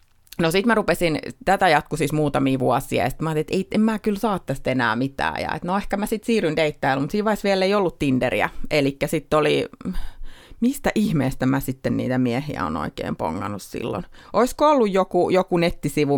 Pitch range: 140-185 Hz